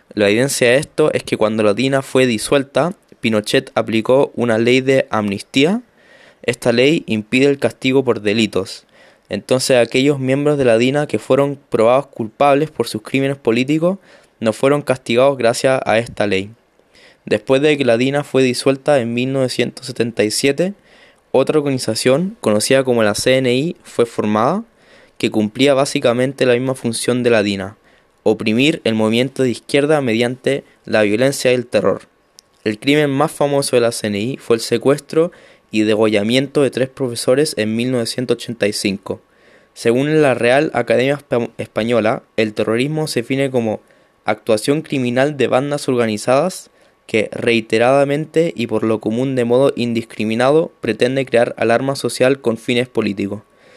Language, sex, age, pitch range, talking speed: Swahili, male, 20-39, 115-140 Hz, 145 wpm